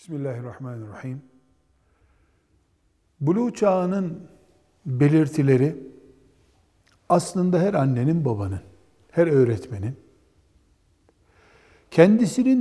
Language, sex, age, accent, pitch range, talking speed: Turkish, male, 60-79, native, 115-180 Hz, 50 wpm